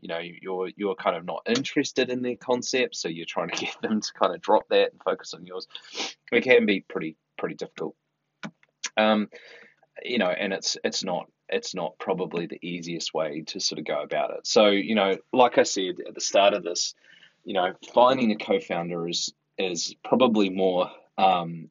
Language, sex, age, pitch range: English, male, 30-49, 85-110 Hz